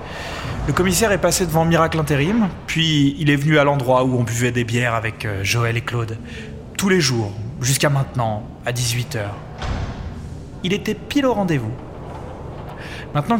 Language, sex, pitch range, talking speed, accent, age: French, male, 120-165 Hz, 155 wpm, French, 30-49